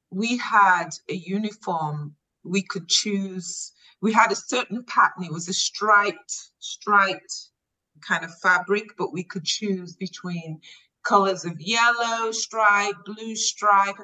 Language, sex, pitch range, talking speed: English, female, 185-240 Hz, 135 wpm